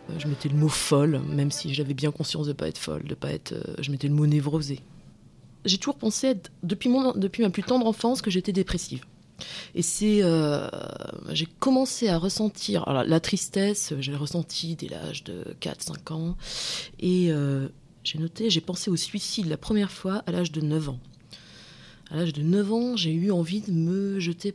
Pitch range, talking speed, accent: 155-205 Hz, 205 wpm, French